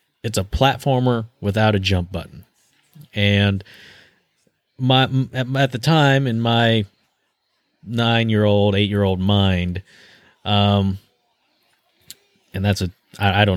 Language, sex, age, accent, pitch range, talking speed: English, male, 30-49, American, 100-130 Hz, 105 wpm